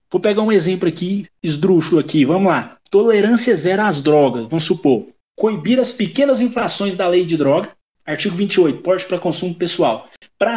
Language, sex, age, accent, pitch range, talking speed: Portuguese, male, 20-39, Brazilian, 165-205 Hz, 170 wpm